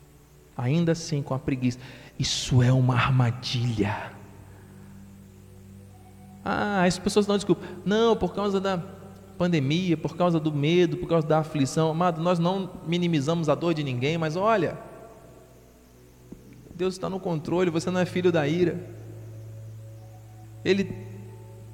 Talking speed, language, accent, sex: 130 wpm, Portuguese, Brazilian, male